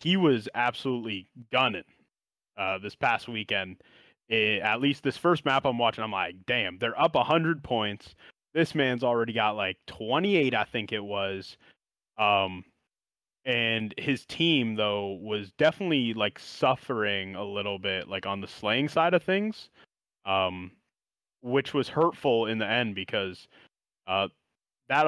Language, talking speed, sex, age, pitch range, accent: English, 150 wpm, male, 20-39, 100-130 Hz, American